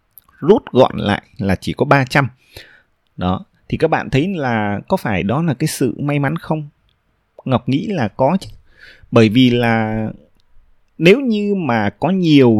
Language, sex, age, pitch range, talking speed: Vietnamese, male, 20-39, 105-155 Hz, 165 wpm